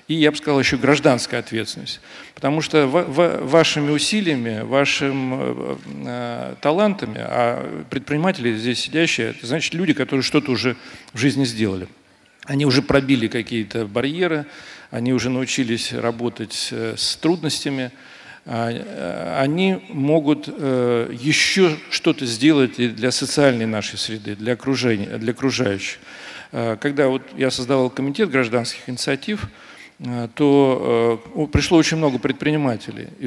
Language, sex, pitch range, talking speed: Russian, male, 115-145 Hz, 115 wpm